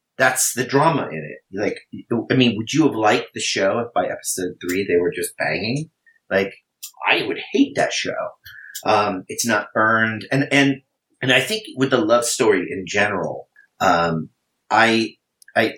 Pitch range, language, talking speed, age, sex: 105-140 Hz, English, 175 wpm, 30-49, male